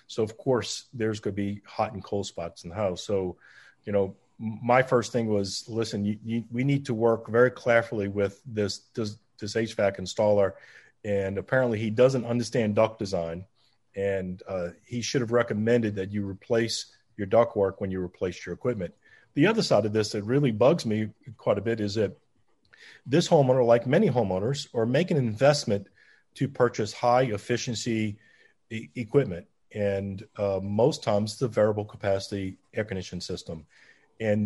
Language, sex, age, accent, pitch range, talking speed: English, male, 40-59, American, 100-120 Hz, 175 wpm